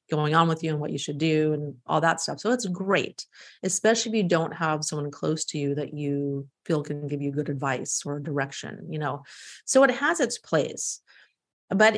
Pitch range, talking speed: 155-200 Hz, 215 wpm